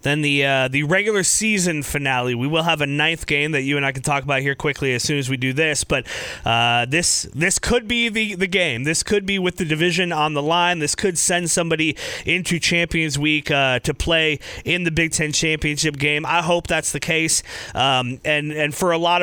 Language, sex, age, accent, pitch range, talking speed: English, male, 30-49, American, 140-170 Hz, 230 wpm